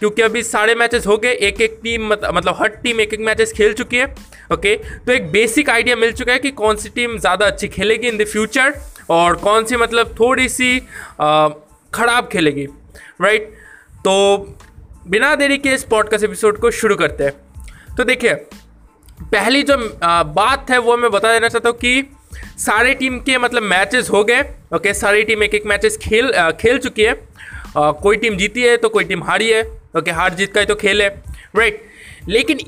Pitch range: 205-250 Hz